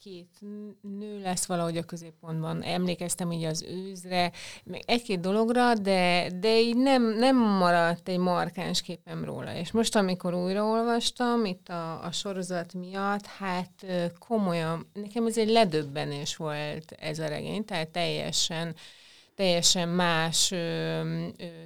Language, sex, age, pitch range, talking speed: Hungarian, female, 30-49, 160-185 Hz, 135 wpm